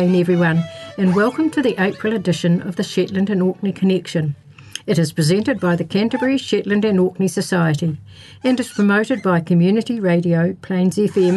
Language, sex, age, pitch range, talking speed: English, female, 60-79, 170-210 Hz, 165 wpm